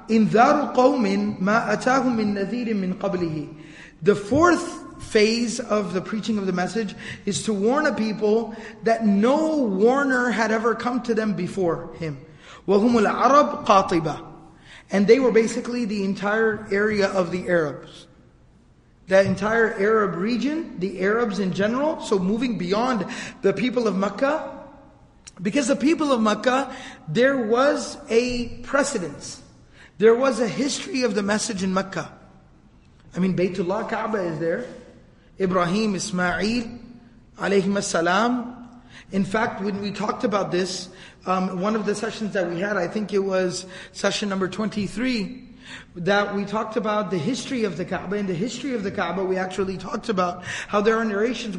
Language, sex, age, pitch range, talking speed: English, male, 30-49, 190-240 Hz, 150 wpm